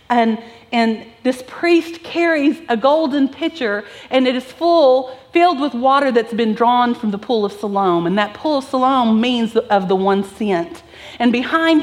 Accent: American